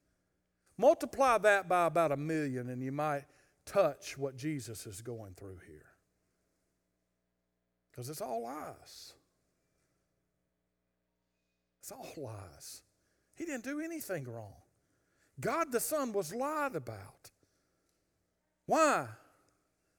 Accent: American